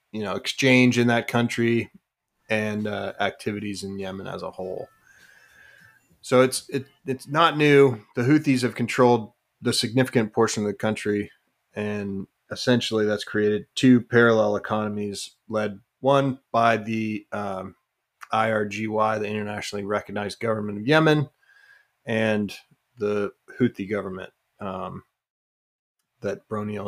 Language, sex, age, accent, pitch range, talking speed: English, male, 30-49, American, 105-125 Hz, 125 wpm